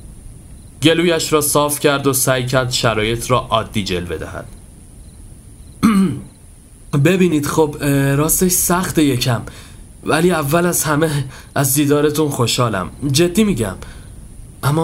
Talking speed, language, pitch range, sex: 110 wpm, Persian, 115-155 Hz, male